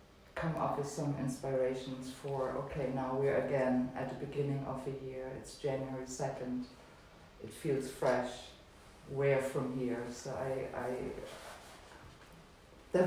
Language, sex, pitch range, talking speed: English, female, 130-160 Hz, 135 wpm